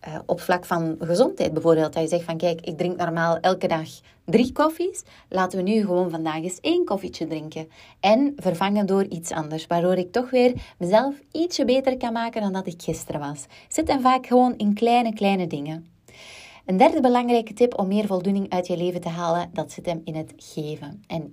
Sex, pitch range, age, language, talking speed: female, 175-210 Hz, 20-39, Dutch, 205 wpm